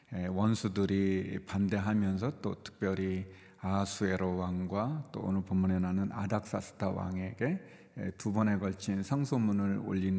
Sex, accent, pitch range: male, native, 95-115 Hz